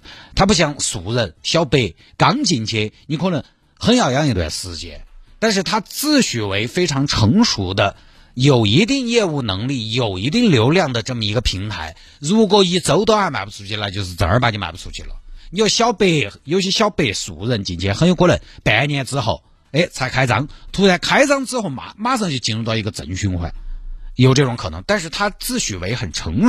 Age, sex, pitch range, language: 50-69, male, 100-155 Hz, Chinese